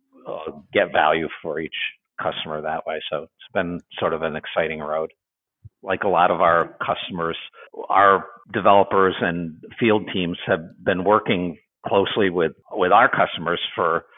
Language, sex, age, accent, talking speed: English, male, 50-69, American, 150 wpm